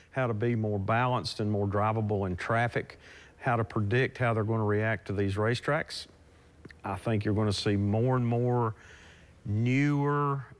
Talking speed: 175 wpm